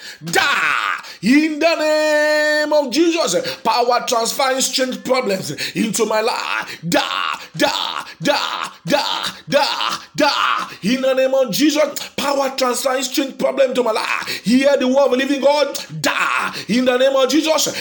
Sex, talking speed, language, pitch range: male, 150 wpm, English, 200-280 Hz